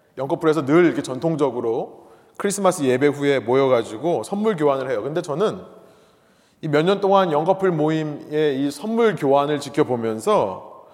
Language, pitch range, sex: Korean, 150-210 Hz, male